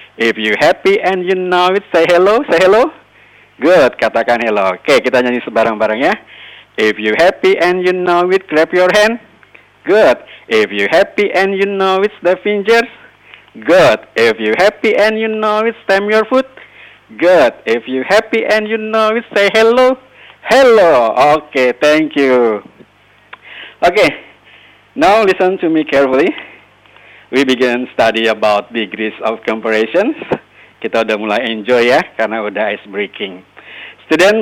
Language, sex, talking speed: Indonesian, male, 155 wpm